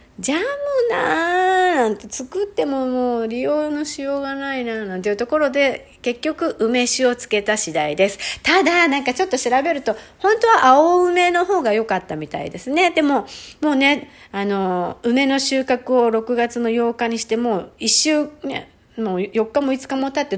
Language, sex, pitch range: Japanese, female, 220-300 Hz